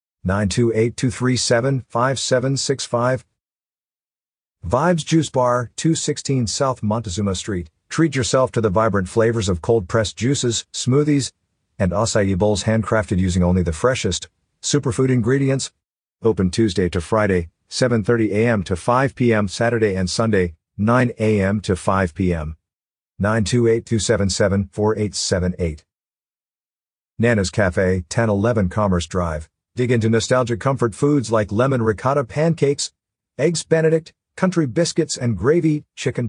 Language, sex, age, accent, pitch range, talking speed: English, male, 50-69, American, 105-140 Hz, 110 wpm